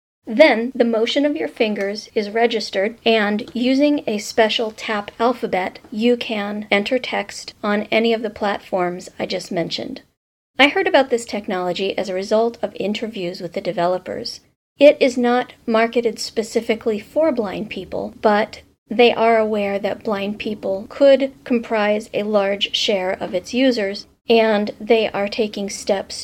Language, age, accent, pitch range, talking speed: English, 40-59, American, 205-240 Hz, 155 wpm